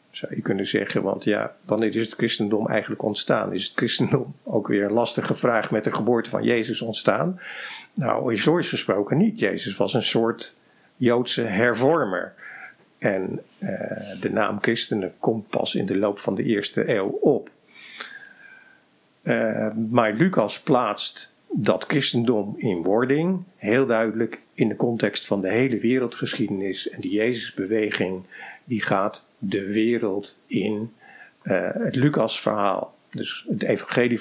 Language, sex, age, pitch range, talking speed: Dutch, male, 50-69, 105-135 Hz, 145 wpm